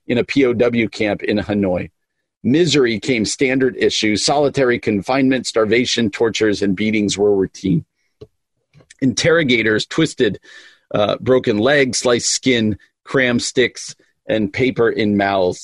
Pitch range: 110-135 Hz